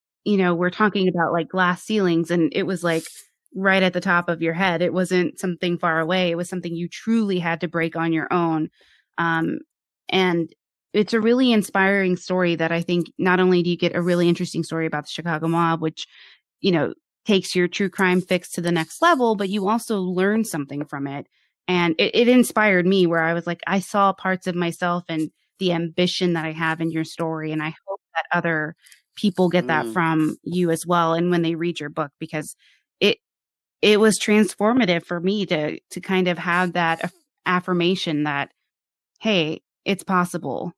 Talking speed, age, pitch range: 200 wpm, 20-39, 165-190 Hz